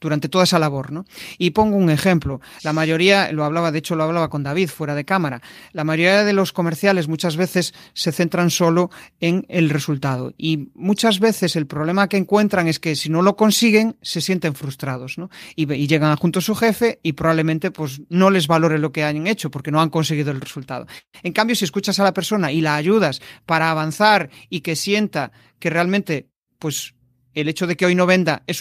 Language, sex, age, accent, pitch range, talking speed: Spanish, male, 40-59, Spanish, 155-185 Hz, 210 wpm